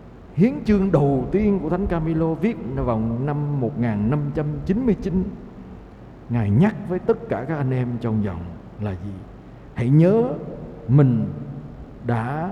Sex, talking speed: male, 130 wpm